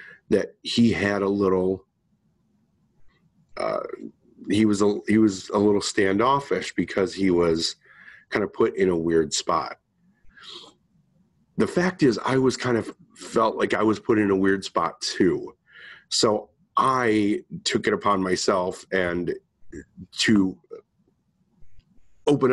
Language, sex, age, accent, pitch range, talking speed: English, male, 30-49, American, 95-120 Hz, 130 wpm